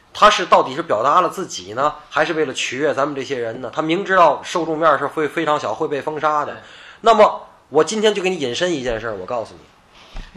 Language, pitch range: Chinese, 155-235 Hz